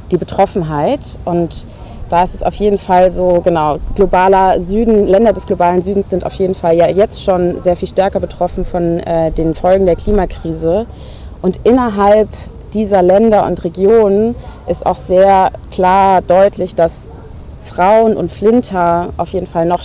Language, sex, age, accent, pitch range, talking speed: German, female, 30-49, German, 165-195 Hz, 160 wpm